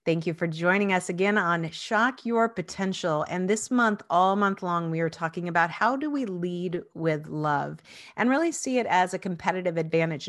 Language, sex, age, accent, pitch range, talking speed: English, female, 40-59, American, 160-210 Hz, 200 wpm